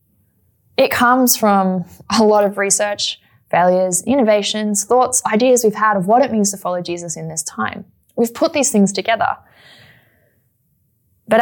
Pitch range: 175-215 Hz